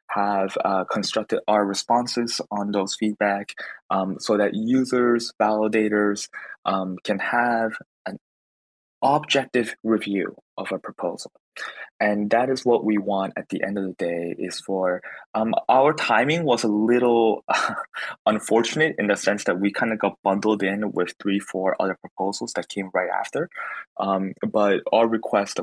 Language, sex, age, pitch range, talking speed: English, male, 20-39, 100-120 Hz, 155 wpm